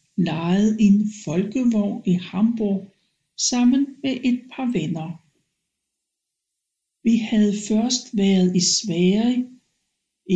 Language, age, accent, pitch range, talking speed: Danish, 60-79, native, 185-235 Hz, 95 wpm